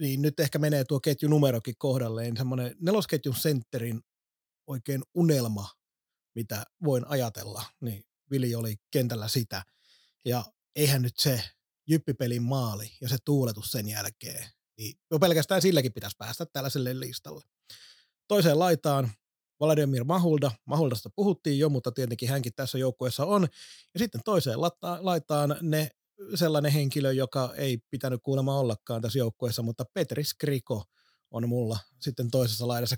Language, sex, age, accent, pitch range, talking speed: Finnish, male, 30-49, native, 120-150 Hz, 130 wpm